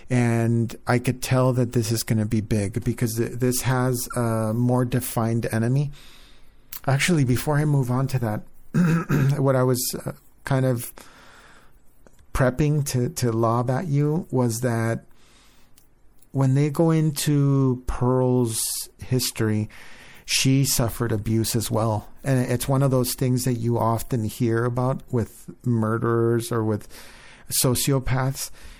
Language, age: English, 50-69